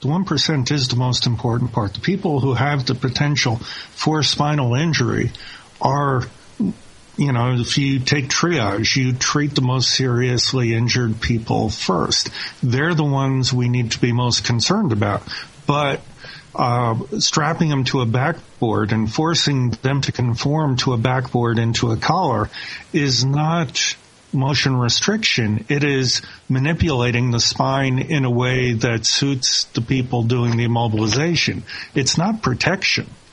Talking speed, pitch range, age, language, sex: 145 wpm, 115-145 Hz, 50-69, English, male